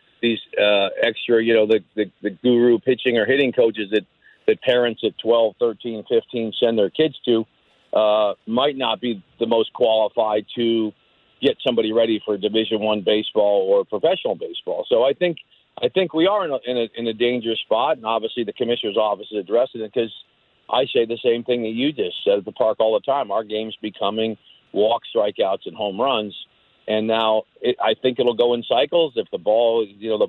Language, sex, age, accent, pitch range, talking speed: English, male, 50-69, American, 110-150 Hz, 205 wpm